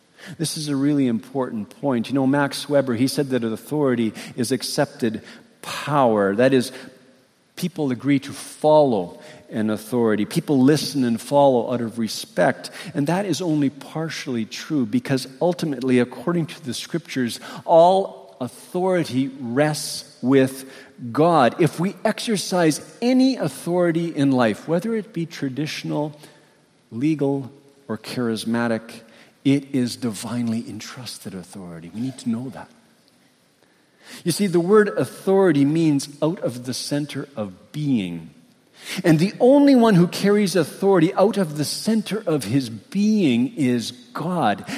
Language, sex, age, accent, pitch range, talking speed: English, male, 50-69, American, 125-170 Hz, 135 wpm